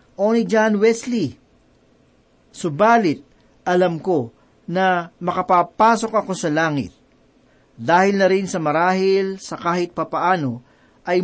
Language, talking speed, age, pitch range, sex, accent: Filipino, 105 wpm, 40-59, 145-210 Hz, male, native